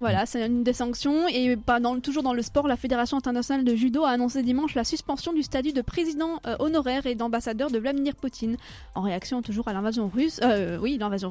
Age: 20-39